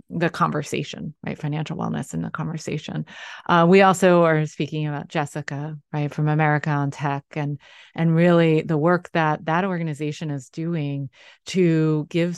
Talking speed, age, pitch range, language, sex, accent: 155 wpm, 30-49, 155-185 Hz, English, female, American